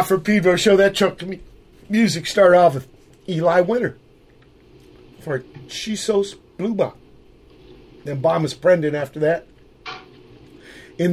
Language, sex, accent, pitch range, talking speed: English, male, American, 140-185 Hz, 130 wpm